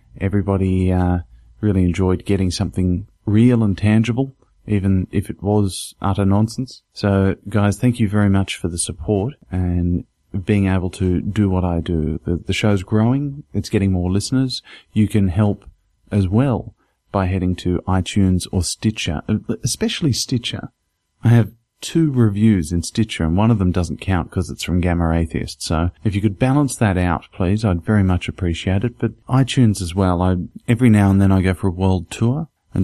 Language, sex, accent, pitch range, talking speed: English, male, Australian, 90-110 Hz, 180 wpm